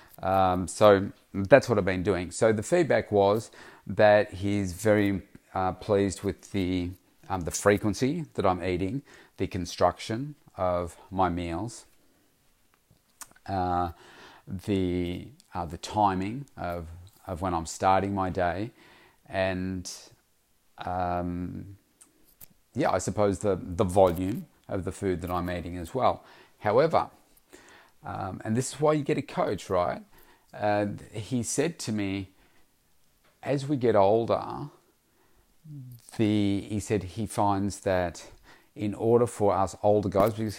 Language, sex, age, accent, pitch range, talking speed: English, male, 40-59, Australian, 90-105 Hz, 135 wpm